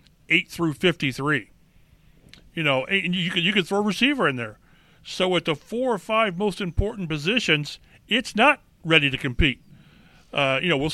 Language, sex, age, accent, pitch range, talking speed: English, male, 40-59, American, 155-200 Hz, 180 wpm